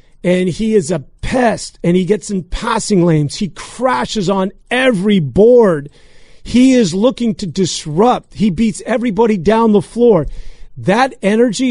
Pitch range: 180-245 Hz